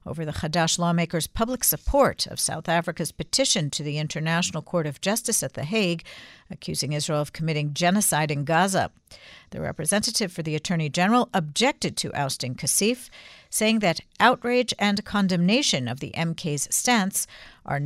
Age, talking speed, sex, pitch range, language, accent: 50-69, 155 wpm, female, 155-215 Hz, English, American